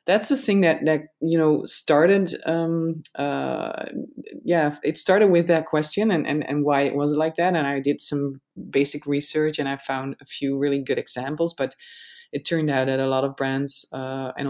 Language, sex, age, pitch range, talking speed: English, female, 20-39, 145-170 Hz, 205 wpm